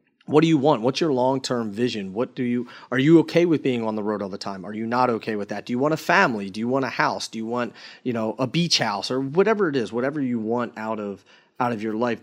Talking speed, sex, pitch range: 290 wpm, male, 110-130 Hz